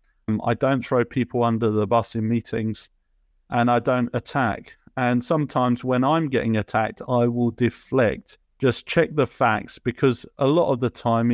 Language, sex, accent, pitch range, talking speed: English, male, British, 120-135 Hz, 170 wpm